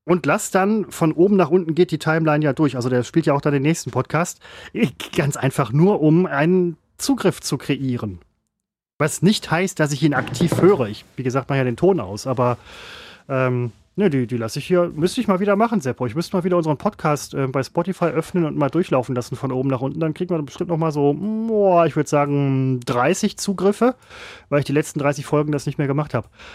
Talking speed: 230 wpm